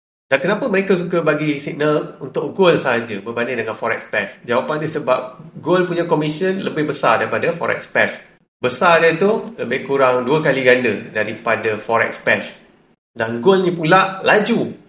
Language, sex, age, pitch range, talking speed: Malay, male, 30-49, 130-180 Hz, 155 wpm